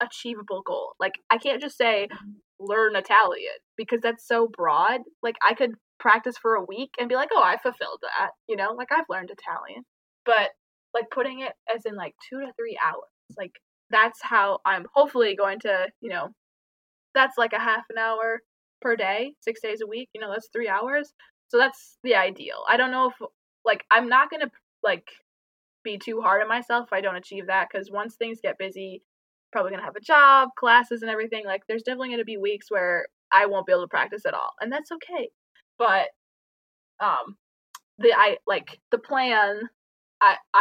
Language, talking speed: English, 200 wpm